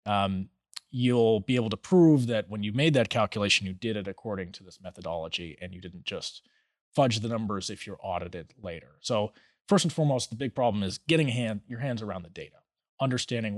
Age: 30-49